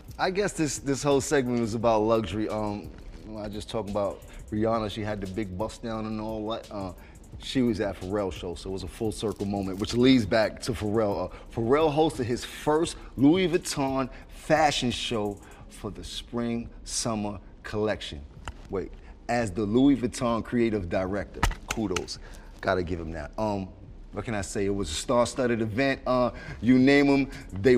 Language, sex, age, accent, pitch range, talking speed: English, male, 30-49, American, 105-130 Hz, 175 wpm